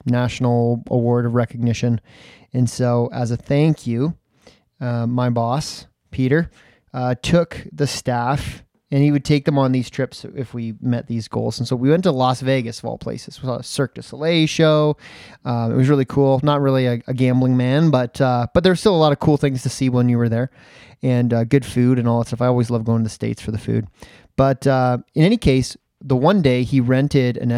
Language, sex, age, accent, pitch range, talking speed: English, male, 20-39, American, 120-150 Hz, 225 wpm